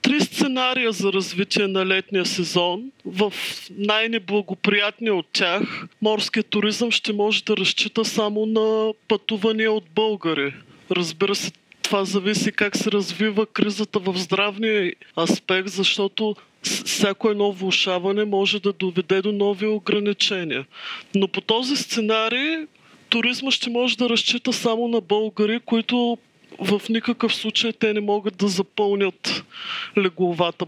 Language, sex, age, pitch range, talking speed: Bulgarian, male, 40-59, 185-225 Hz, 125 wpm